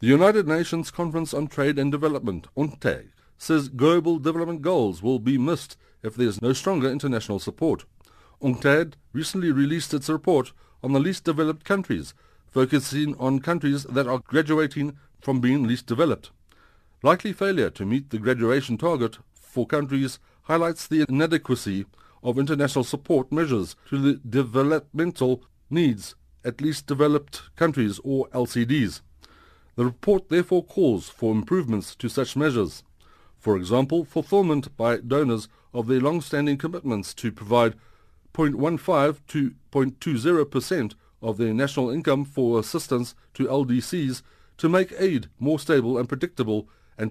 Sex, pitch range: male, 120-155 Hz